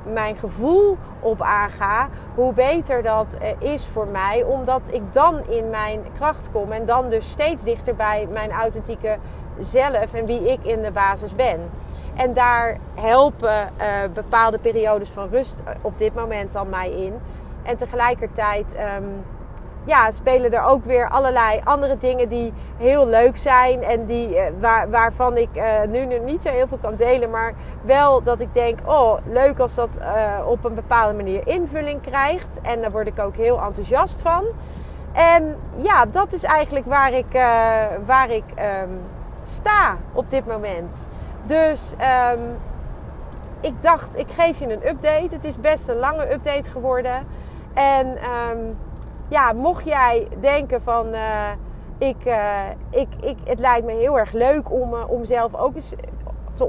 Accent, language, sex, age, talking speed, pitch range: Dutch, Dutch, female, 40-59, 165 wpm, 220-270 Hz